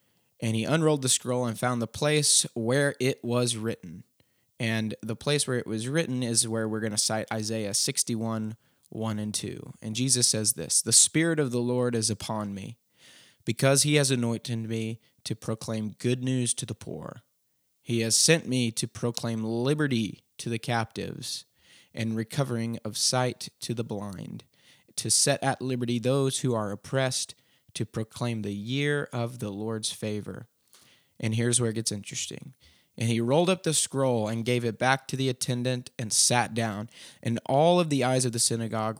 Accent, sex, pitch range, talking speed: American, male, 110-130 Hz, 180 wpm